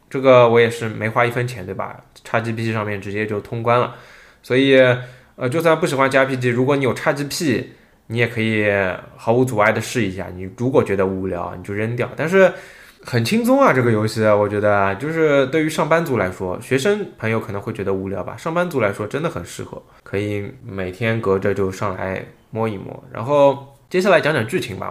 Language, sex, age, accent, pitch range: Chinese, male, 20-39, native, 105-150 Hz